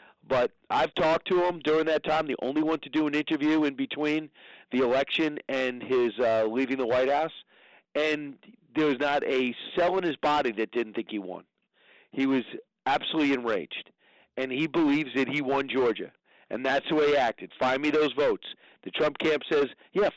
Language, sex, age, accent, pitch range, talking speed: English, male, 40-59, American, 135-165 Hz, 195 wpm